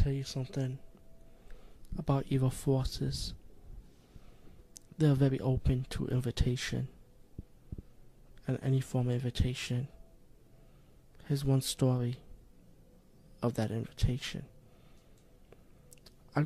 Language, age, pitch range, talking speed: English, 20-39, 120-135 Hz, 85 wpm